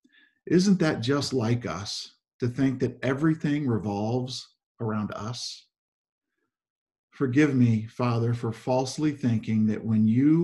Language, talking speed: English, 120 wpm